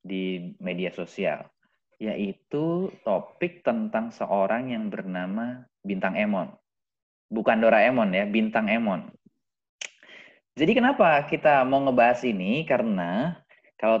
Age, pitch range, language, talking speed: 20-39, 95-155 Hz, Indonesian, 105 wpm